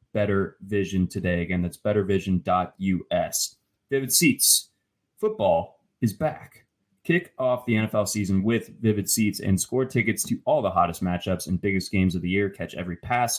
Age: 20-39